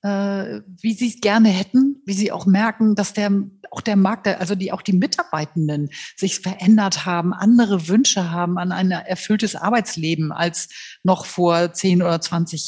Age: 50-69